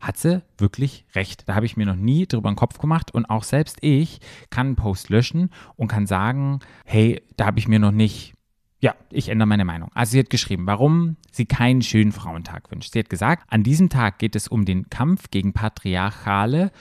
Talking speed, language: 215 wpm, German